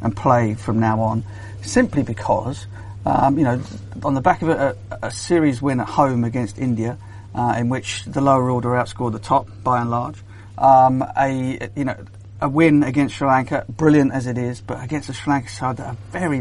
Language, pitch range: English, 110-135 Hz